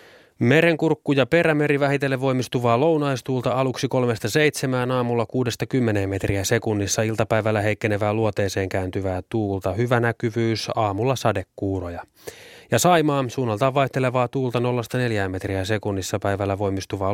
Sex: male